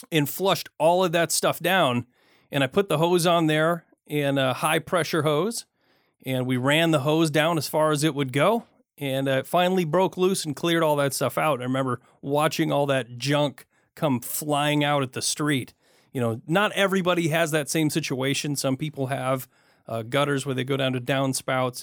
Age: 40-59